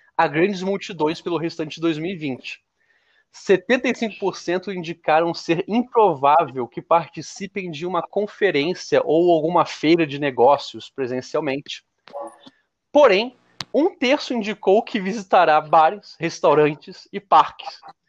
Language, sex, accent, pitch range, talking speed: Portuguese, male, Brazilian, 145-185 Hz, 105 wpm